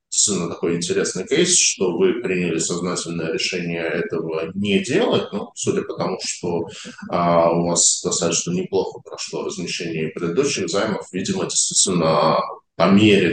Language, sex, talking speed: Russian, male, 135 wpm